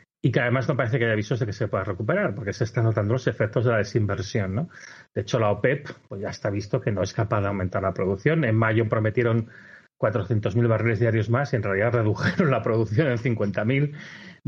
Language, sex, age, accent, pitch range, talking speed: Spanish, male, 30-49, Spanish, 110-135 Hz, 225 wpm